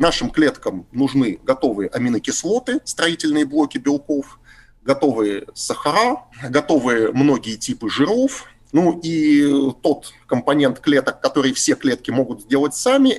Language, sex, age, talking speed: Russian, male, 30-49, 115 wpm